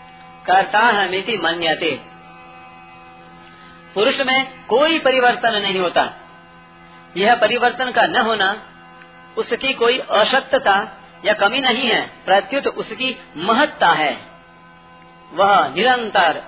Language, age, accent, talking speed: Hindi, 40-59, native, 100 wpm